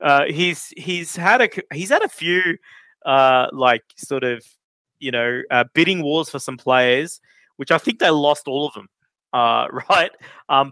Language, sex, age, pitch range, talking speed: English, male, 20-39, 120-155 Hz, 180 wpm